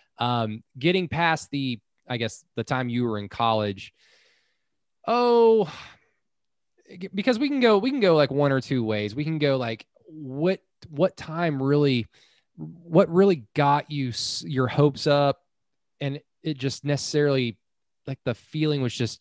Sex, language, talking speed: male, English, 155 wpm